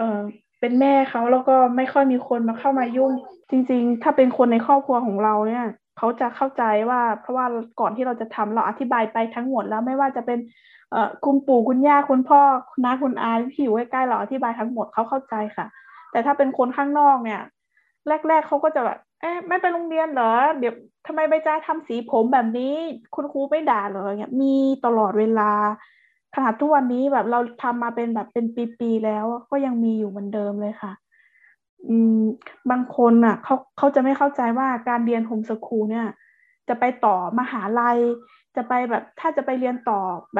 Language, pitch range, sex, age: Thai, 230-275 Hz, female, 20-39